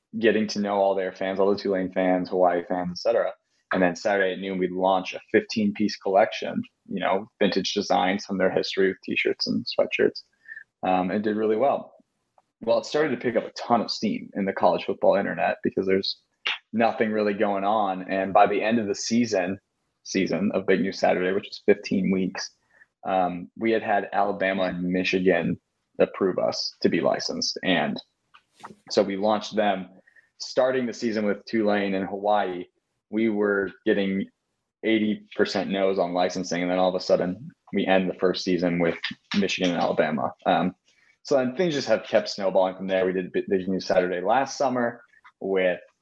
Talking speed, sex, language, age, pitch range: 185 wpm, male, English, 20-39, 90-105 Hz